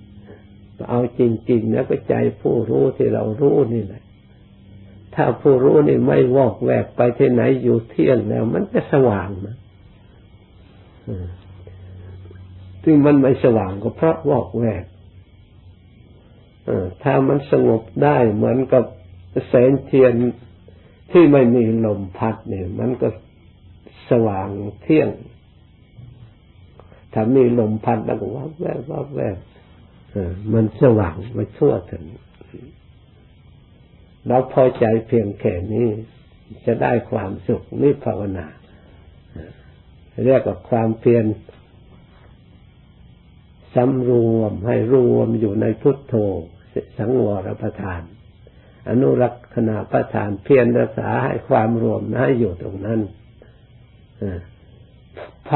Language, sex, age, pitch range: Thai, male, 60-79, 100-120 Hz